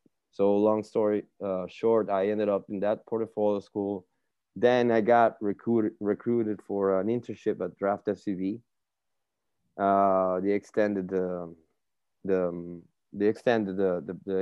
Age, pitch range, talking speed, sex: 30-49, 95-110 Hz, 110 wpm, male